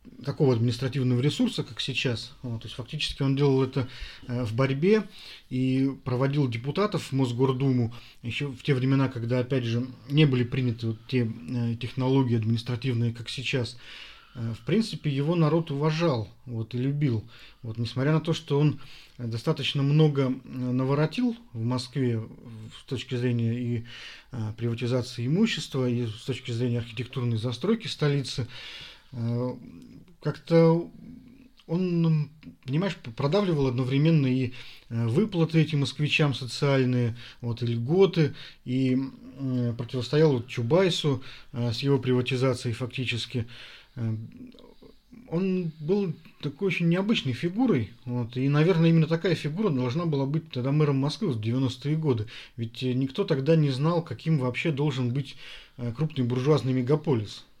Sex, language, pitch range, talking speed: male, Russian, 125-155 Hz, 115 wpm